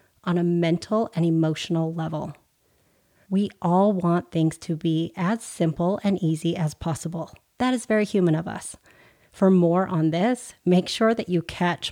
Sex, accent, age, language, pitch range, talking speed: female, American, 30-49, English, 165-215 Hz, 165 wpm